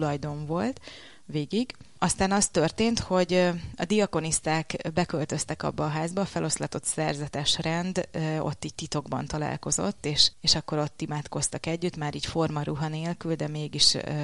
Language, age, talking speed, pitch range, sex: Hungarian, 30-49, 135 wpm, 155-175 Hz, female